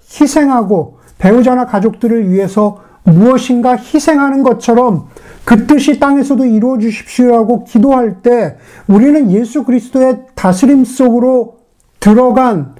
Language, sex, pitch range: Korean, male, 195-255 Hz